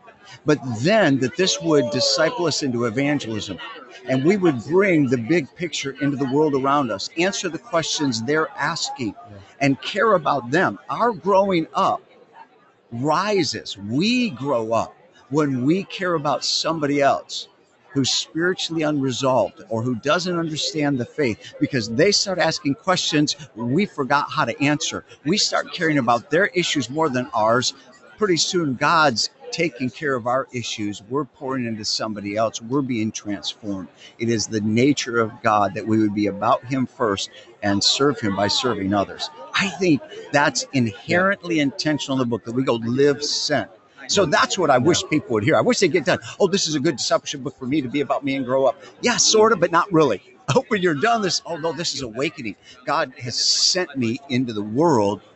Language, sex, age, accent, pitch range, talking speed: English, male, 50-69, American, 120-165 Hz, 185 wpm